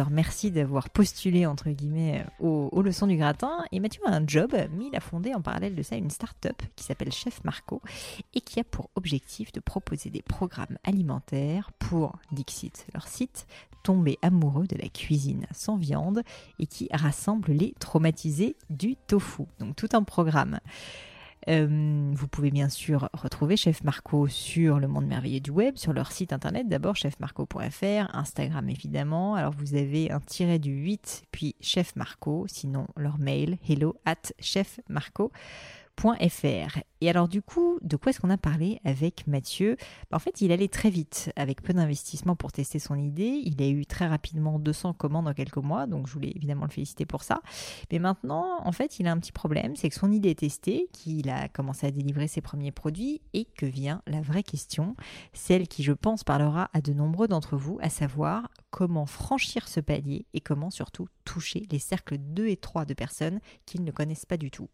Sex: female